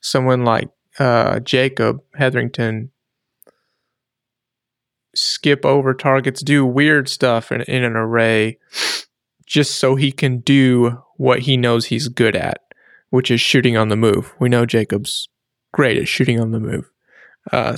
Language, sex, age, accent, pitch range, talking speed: English, male, 30-49, American, 120-145 Hz, 140 wpm